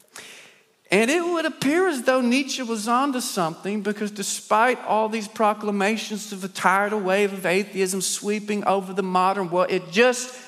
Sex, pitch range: male, 190-240 Hz